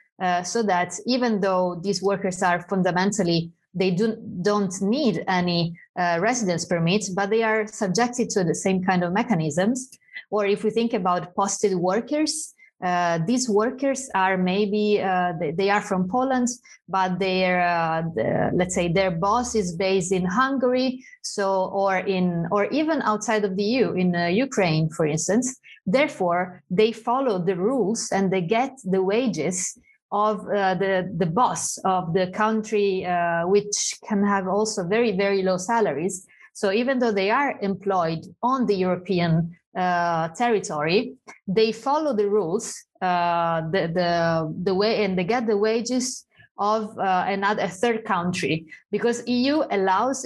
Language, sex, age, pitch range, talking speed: Romanian, female, 30-49, 185-225 Hz, 160 wpm